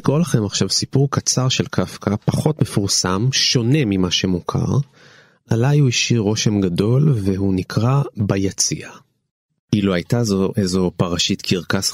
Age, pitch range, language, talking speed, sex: 30-49, 95-110 Hz, Hebrew, 135 wpm, male